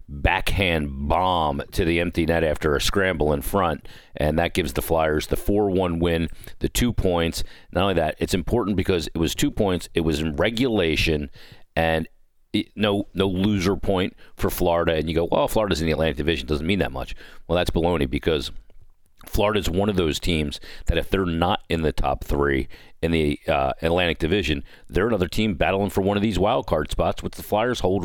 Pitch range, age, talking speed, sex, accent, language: 75-95 Hz, 40-59, 200 wpm, male, American, English